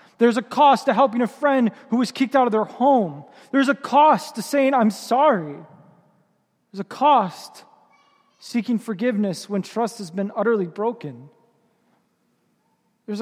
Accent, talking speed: American, 150 wpm